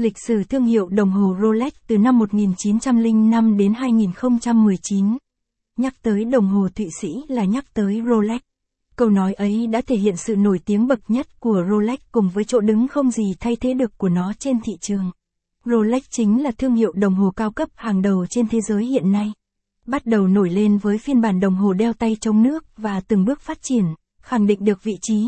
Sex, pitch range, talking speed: female, 205-235 Hz, 210 wpm